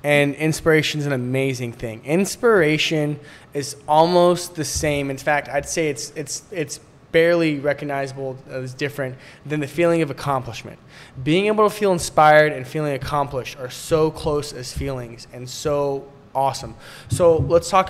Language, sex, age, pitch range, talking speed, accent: English, male, 20-39, 130-155 Hz, 160 wpm, American